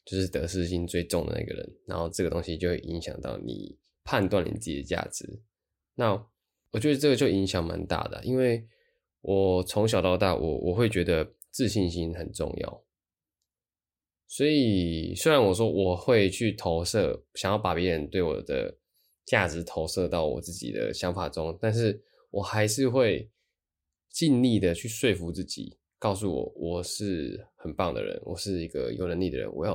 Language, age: Chinese, 20-39